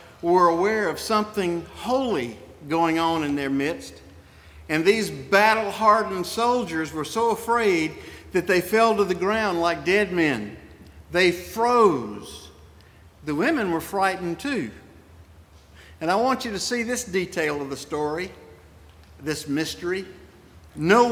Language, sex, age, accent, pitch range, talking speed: English, male, 50-69, American, 135-215 Hz, 135 wpm